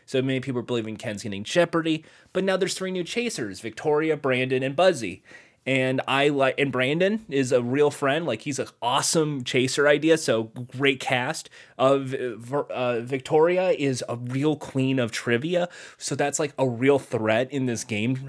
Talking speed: 175 wpm